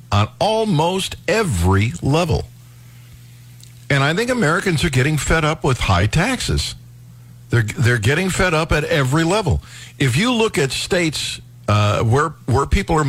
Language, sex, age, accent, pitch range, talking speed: English, male, 50-69, American, 115-145 Hz, 150 wpm